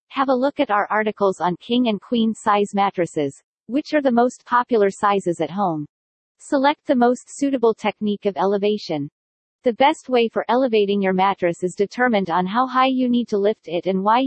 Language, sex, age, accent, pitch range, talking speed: English, female, 40-59, American, 190-250 Hz, 195 wpm